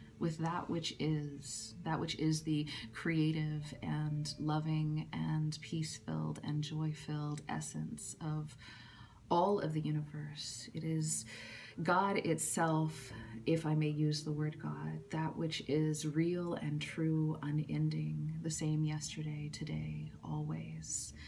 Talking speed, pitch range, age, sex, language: 125 wpm, 145-160 Hz, 30-49, female, English